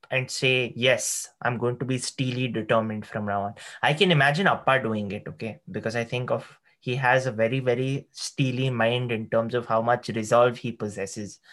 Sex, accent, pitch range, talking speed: male, Indian, 120-150 Hz, 200 wpm